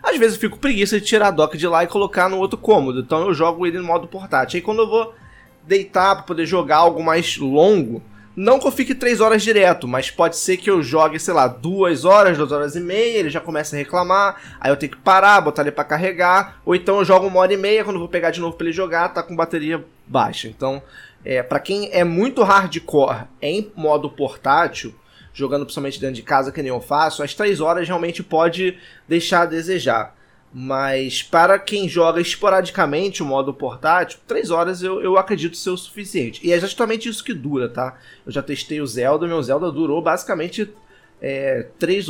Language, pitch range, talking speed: Portuguese, 145-195 Hz, 215 wpm